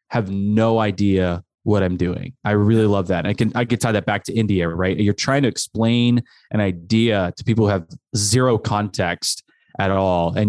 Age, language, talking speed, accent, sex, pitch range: 20-39, English, 205 wpm, American, male, 95-115 Hz